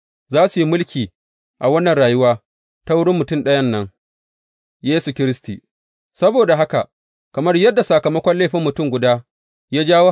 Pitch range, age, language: 115-170 Hz, 30-49, English